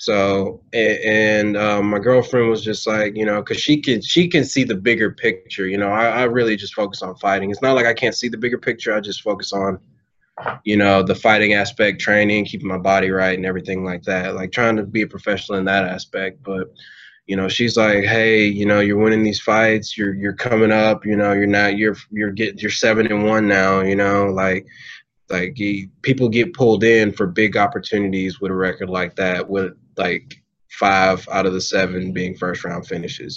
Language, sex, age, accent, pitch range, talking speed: English, male, 20-39, American, 100-110 Hz, 215 wpm